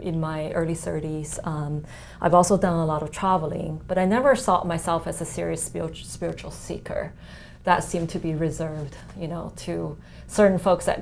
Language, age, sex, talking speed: English, 20-39, female, 185 wpm